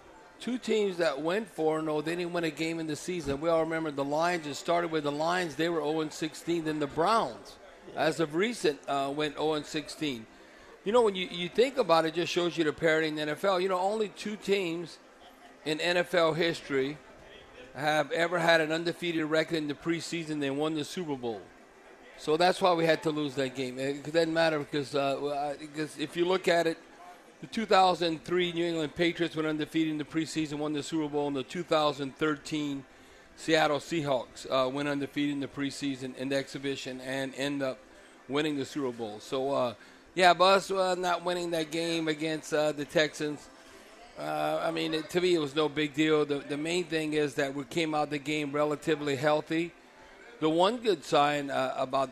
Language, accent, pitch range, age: English, American, 145-170 Hz, 50-69